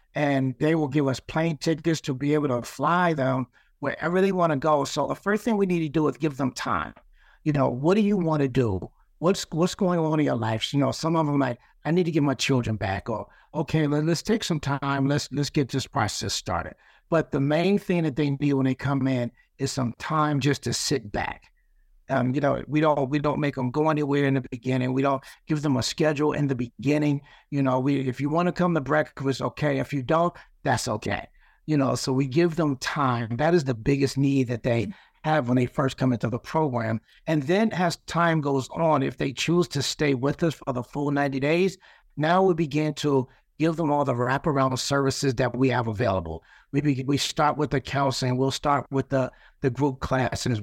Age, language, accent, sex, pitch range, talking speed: 60-79, English, American, male, 130-155 Hz, 230 wpm